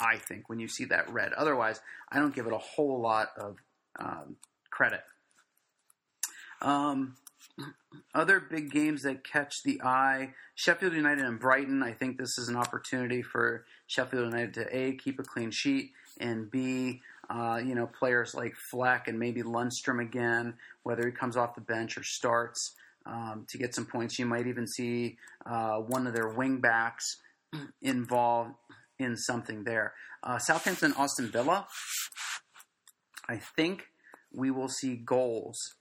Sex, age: male, 30-49